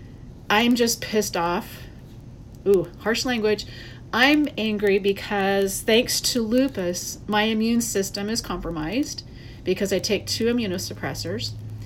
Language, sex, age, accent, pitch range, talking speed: English, female, 40-59, American, 130-215 Hz, 115 wpm